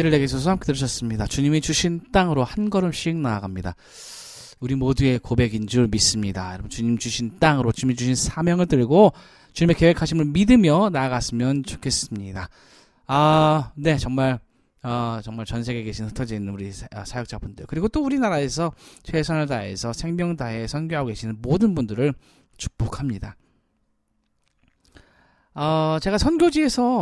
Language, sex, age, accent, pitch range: Korean, male, 20-39, native, 115-175 Hz